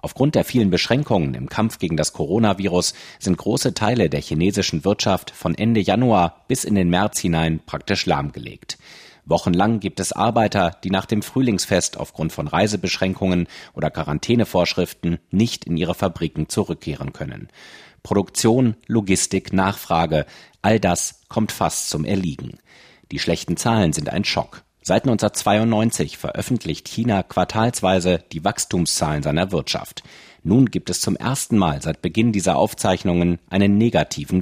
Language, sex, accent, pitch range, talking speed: German, male, German, 85-110 Hz, 140 wpm